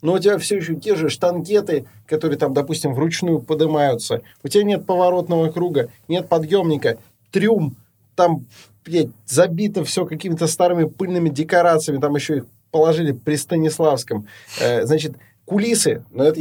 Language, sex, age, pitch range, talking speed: Russian, male, 20-39, 145-195 Hz, 140 wpm